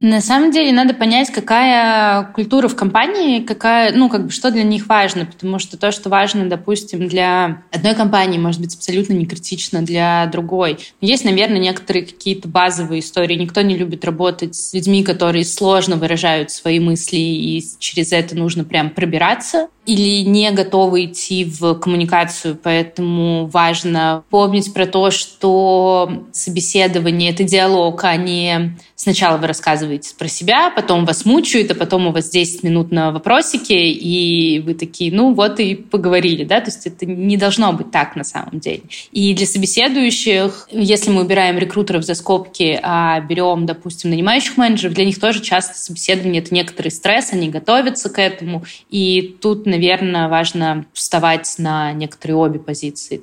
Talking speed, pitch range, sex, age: 160 wpm, 170-205 Hz, female, 20-39